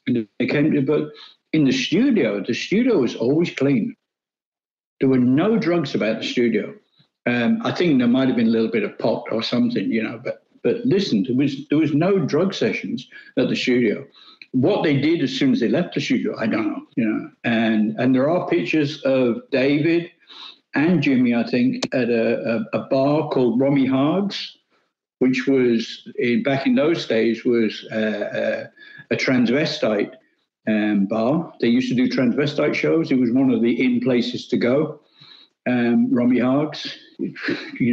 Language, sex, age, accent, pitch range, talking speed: English, male, 60-79, British, 120-195 Hz, 180 wpm